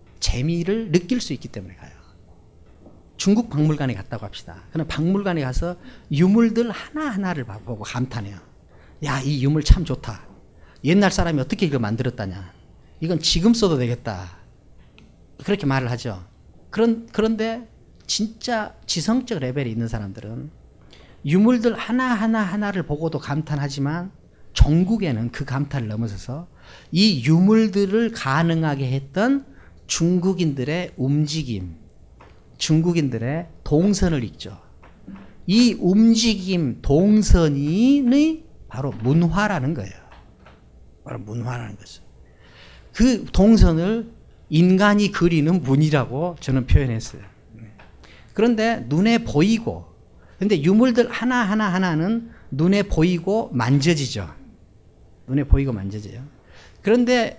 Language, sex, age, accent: Korean, male, 40-59, native